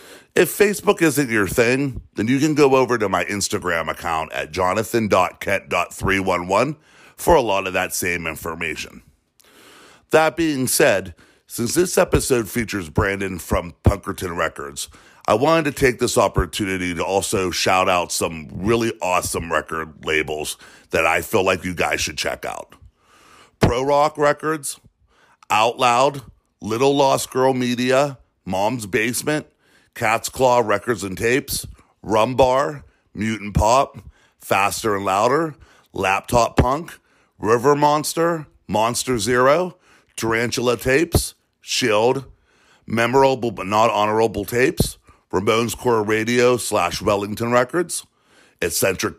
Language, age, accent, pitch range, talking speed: English, 50-69, American, 100-140 Hz, 125 wpm